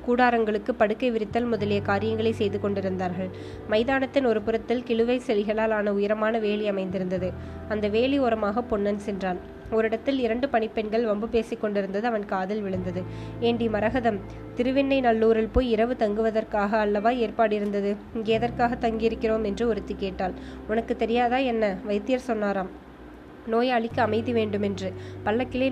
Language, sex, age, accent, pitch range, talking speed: Tamil, female, 20-39, native, 205-235 Hz, 130 wpm